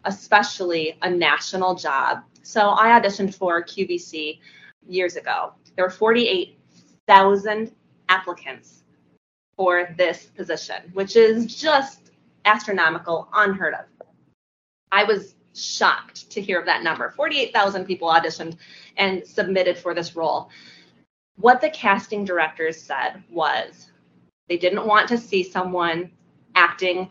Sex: female